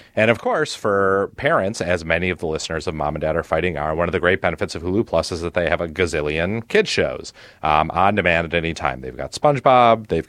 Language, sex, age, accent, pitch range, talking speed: English, male, 30-49, American, 80-115 Hz, 250 wpm